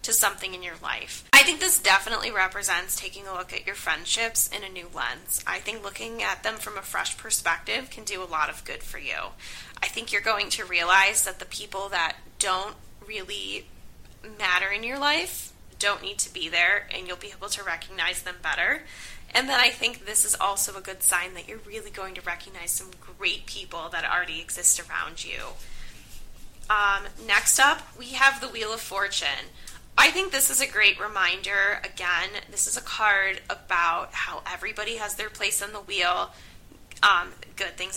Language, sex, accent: English, female, American